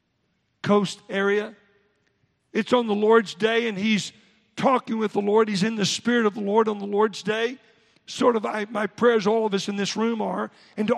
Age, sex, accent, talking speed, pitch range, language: 50-69, male, American, 195 wpm, 200-240 Hz, English